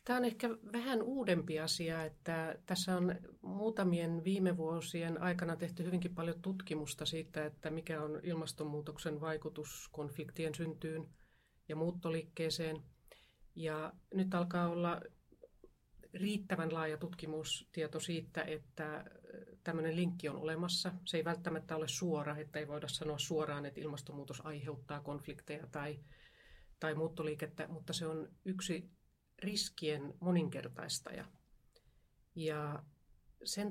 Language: Finnish